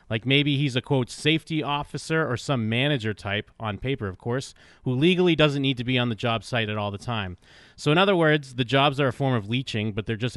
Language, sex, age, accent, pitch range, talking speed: English, male, 30-49, American, 110-145 Hz, 250 wpm